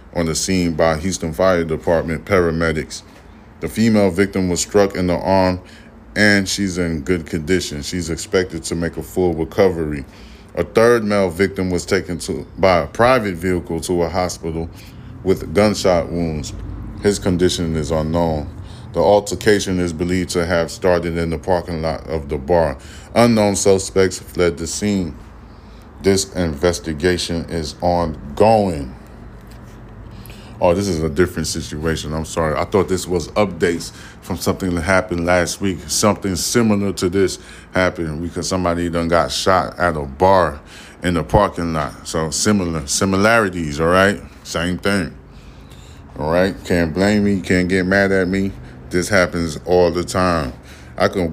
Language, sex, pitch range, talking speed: English, male, 80-95 Hz, 155 wpm